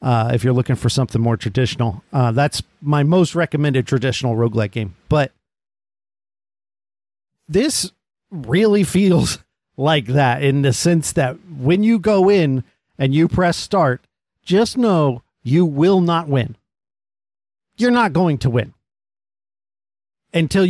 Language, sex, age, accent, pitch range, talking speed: English, male, 50-69, American, 120-160 Hz, 135 wpm